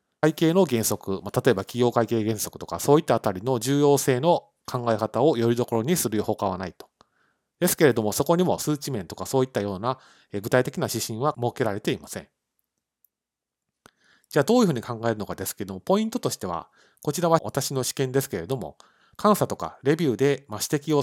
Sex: male